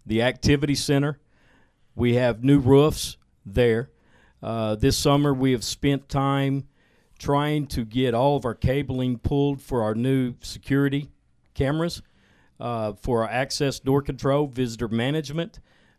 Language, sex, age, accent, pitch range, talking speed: English, male, 50-69, American, 115-140 Hz, 135 wpm